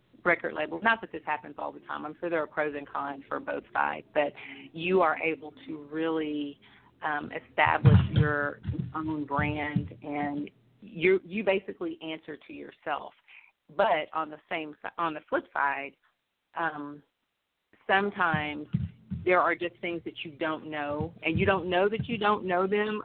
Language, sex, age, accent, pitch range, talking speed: English, female, 30-49, American, 145-170 Hz, 165 wpm